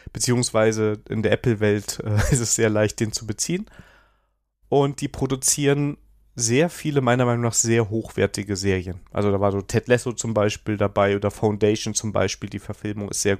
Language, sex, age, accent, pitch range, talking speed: German, male, 30-49, German, 105-130 Hz, 175 wpm